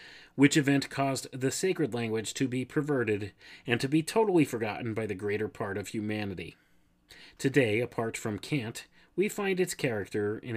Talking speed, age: 165 wpm, 30-49